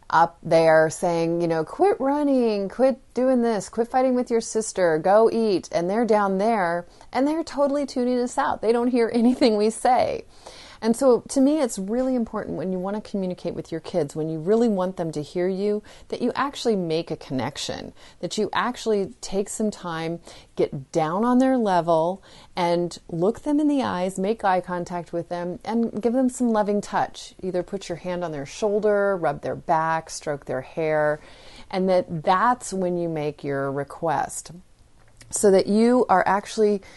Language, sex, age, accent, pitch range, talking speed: English, female, 30-49, American, 160-220 Hz, 190 wpm